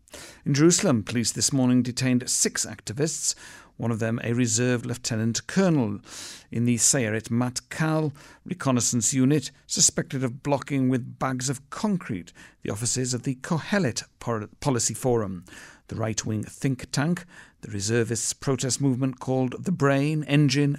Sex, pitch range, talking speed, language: male, 115-135 Hz, 135 wpm, English